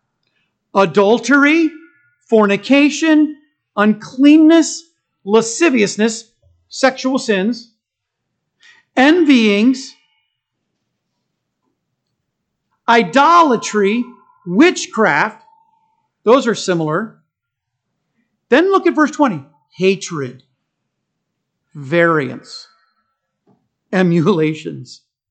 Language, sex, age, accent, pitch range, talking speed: English, male, 50-69, American, 170-265 Hz, 45 wpm